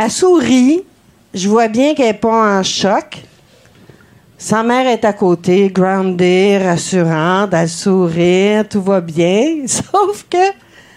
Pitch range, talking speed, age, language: 195-295 Hz, 130 wpm, 50-69, French